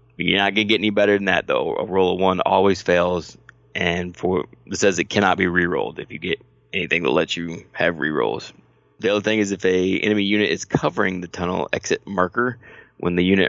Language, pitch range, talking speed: English, 90-100 Hz, 220 wpm